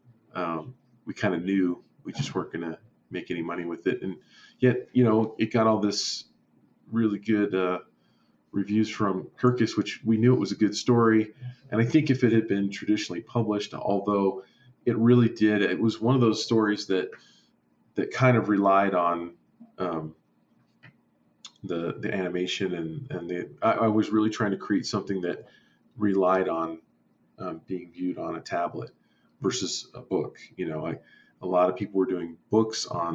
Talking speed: 180 wpm